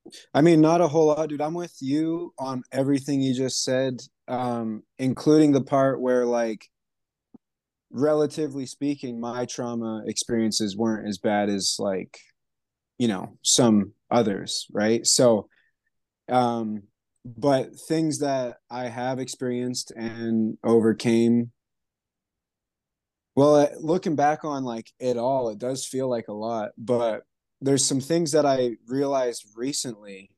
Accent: American